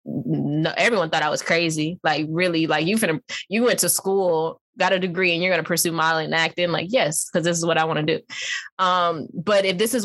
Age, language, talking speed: 10-29, English, 240 wpm